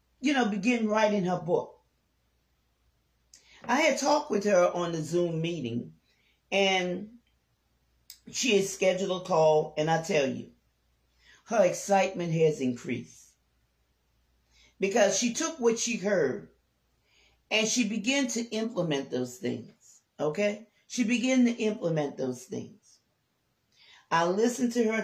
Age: 40-59